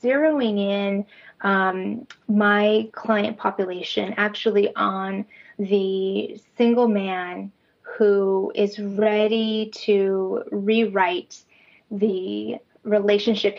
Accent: American